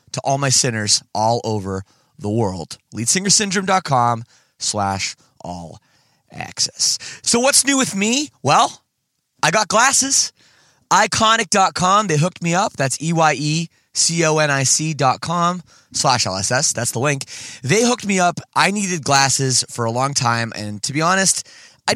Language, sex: English, male